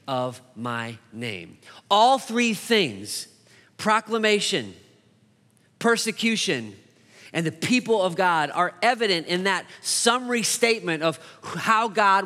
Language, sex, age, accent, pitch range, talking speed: English, male, 30-49, American, 165-220 Hz, 110 wpm